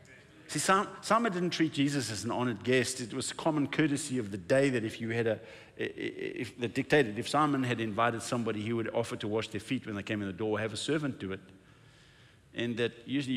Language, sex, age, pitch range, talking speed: English, male, 50-69, 105-135 Hz, 220 wpm